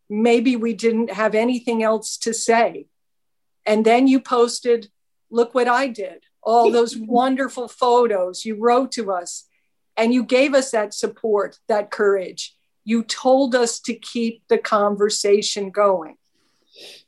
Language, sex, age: English, female, 50-69